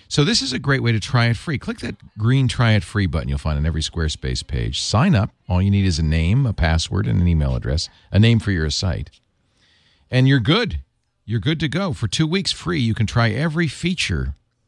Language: English